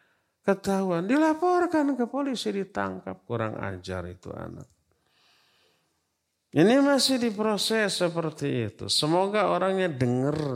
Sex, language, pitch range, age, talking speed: male, Indonesian, 110-155 Hz, 50-69, 95 wpm